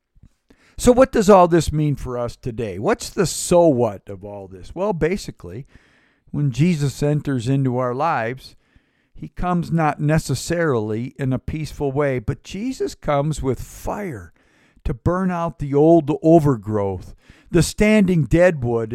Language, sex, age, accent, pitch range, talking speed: English, male, 50-69, American, 115-155 Hz, 145 wpm